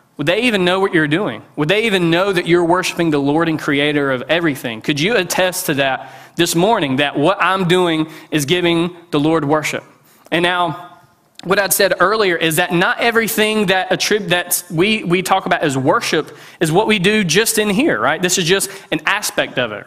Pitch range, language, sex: 155-190 Hz, English, male